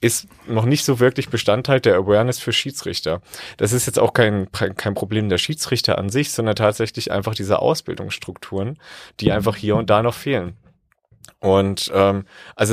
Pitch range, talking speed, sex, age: 105-120 Hz, 170 wpm, male, 30-49